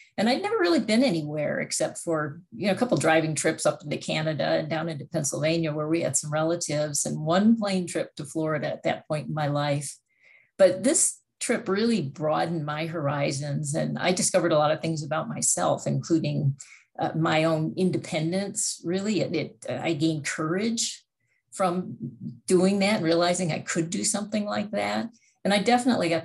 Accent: American